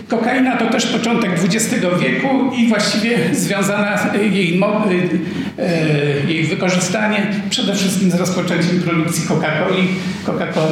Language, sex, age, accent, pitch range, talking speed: Polish, male, 50-69, native, 165-205 Hz, 105 wpm